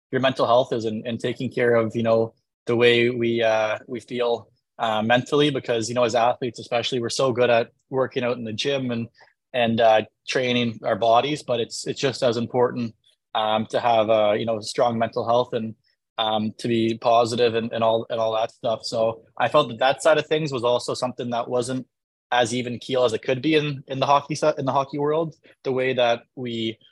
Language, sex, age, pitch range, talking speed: English, male, 20-39, 115-125 Hz, 225 wpm